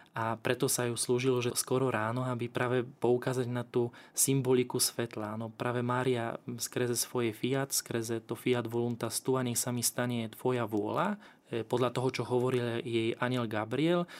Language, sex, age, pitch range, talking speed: Slovak, male, 20-39, 115-125 Hz, 165 wpm